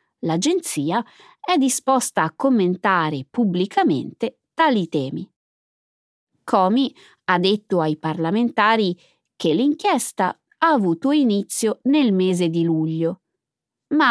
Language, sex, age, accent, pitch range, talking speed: Italian, female, 20-39, native, 170-260 Hz, 100 wpm